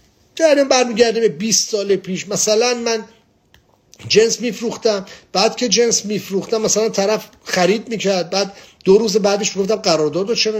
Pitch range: 170-220 Hz